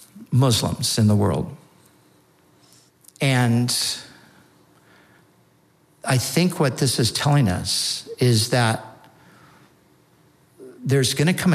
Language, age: English, 60-79